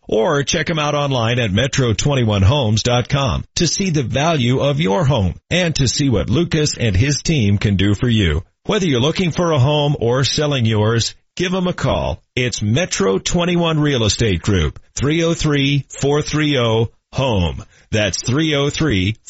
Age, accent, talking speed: 40-59, American, 145 wpm